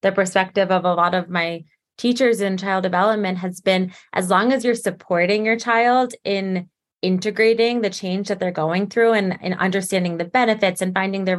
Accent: American